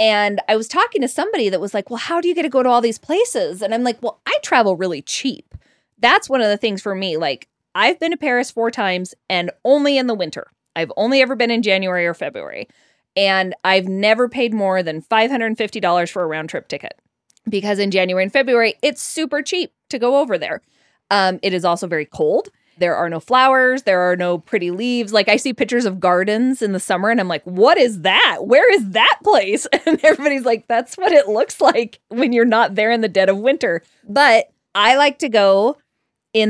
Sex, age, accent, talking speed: female, 20-39, American, 225 wpm